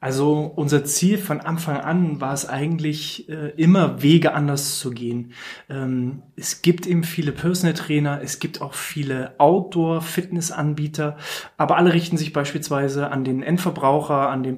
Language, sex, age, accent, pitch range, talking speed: German, male, 20-39, German, 140-165 Hz, 150 wpm